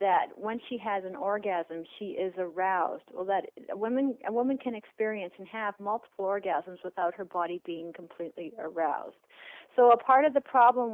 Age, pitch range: 40-59, 185-225 Hz